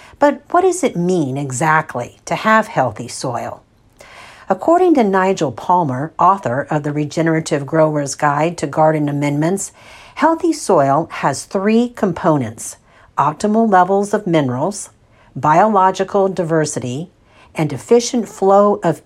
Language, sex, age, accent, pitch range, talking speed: English, female, 60-79, American, 150-195 Hz, 120 wpm